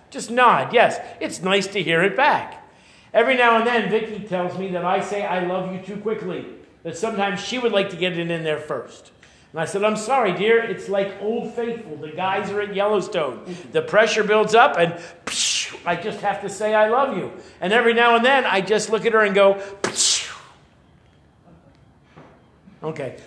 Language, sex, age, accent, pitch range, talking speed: English, male, 50-69, American, 180-215 Hz, 195 wpm